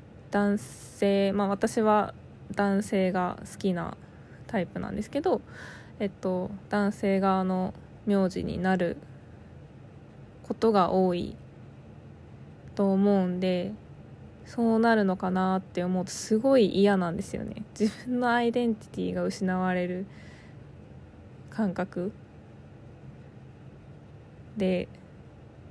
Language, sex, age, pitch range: Japanese, female, 20-39, 185-225 Hz